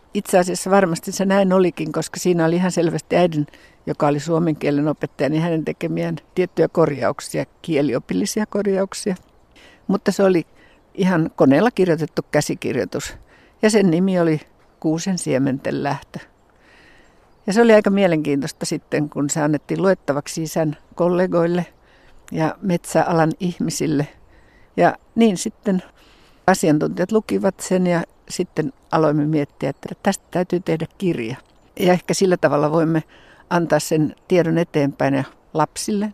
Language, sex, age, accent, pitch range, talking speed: Finnish, female, 60-79, native, 150-180 Hz, 130 wpm